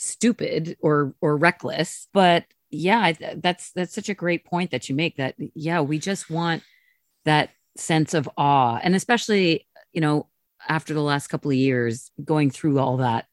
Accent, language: American, English